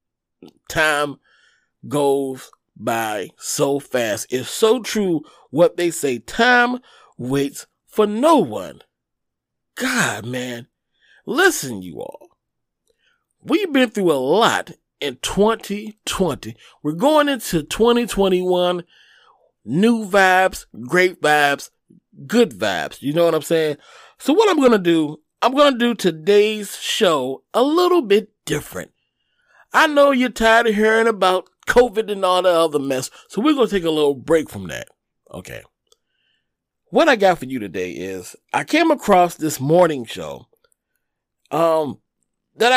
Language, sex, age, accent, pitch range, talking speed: English, male, 40-59, American, 150-235 Hz, 135 wpm